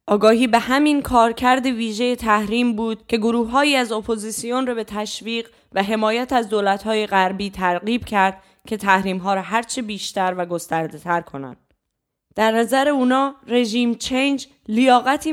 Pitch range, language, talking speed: 195-235 Hz, Persian, 140 wpm